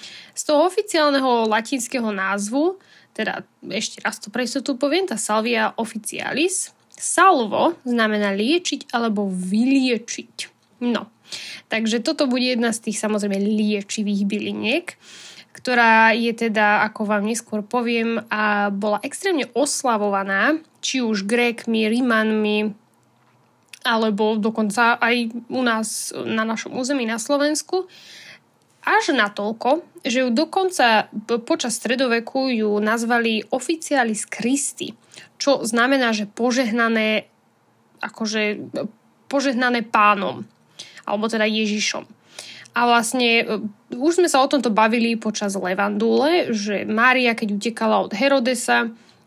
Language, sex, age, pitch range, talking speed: Slovak, female, 10-29, 215-260 Hz, 110 wpm